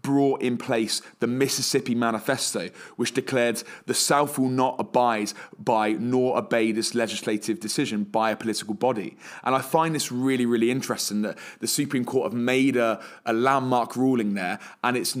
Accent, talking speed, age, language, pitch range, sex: British, 170 wpm, 20-39, English, 115-130 Hz, male